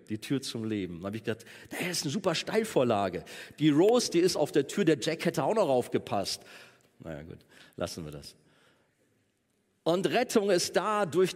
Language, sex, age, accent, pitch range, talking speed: German, male, 40-59, German, 115-165 Hz, 190 wpm